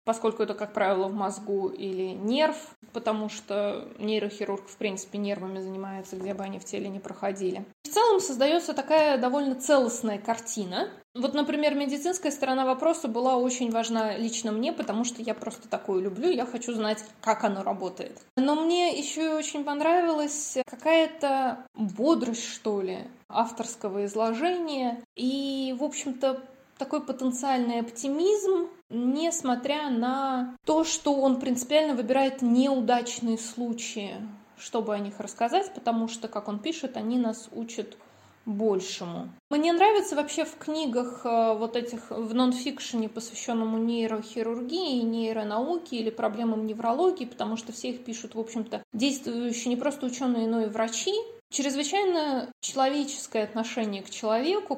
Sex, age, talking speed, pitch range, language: female, 20-39, 135 wpm, 220-280 Hz, Russian